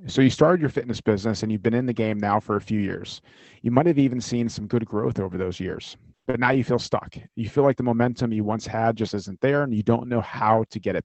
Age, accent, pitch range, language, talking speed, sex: 40-59, American, 110-130 Hz, English, 280 wpm, male